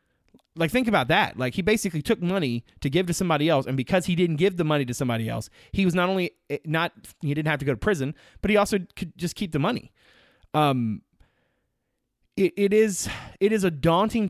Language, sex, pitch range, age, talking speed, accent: English, male, 120-150 Hz, 30-49, 220 wpm, American